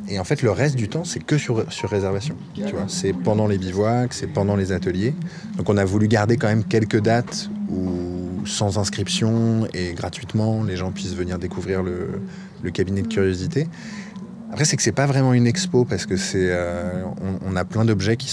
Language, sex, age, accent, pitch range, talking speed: French, male, 20-39, French, 95-125 Hz, 205 wpm